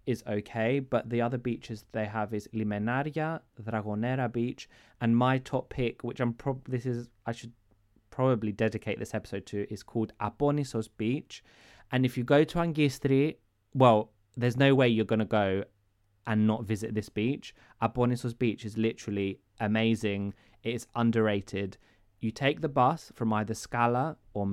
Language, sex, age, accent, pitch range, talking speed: Greek, male, 20-39, British, 110-130 Hz, 160 wpm